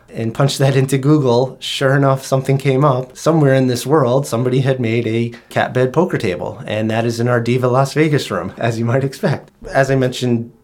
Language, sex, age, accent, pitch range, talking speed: English, male, 30-49, American, 110-130 Hz, 215 wpm